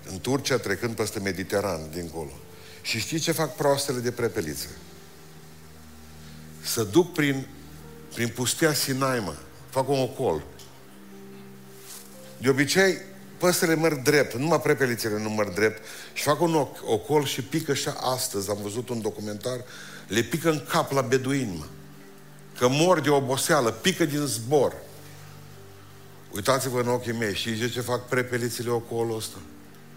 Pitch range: 90-125 Hz